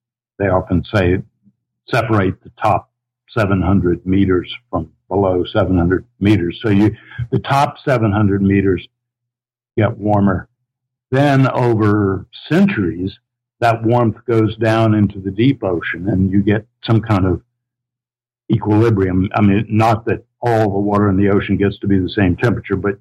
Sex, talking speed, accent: male, 145 wpm, American